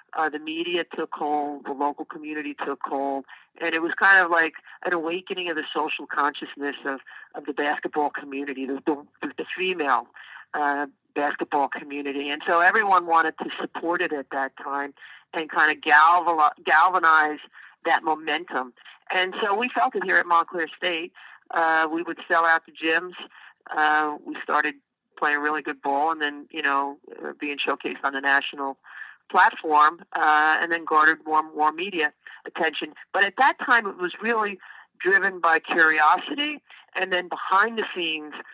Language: English